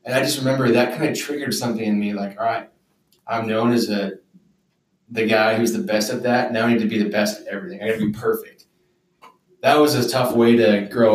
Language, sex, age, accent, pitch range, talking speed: English, male, 20-39, American, 105-125 Hz, 250 wpm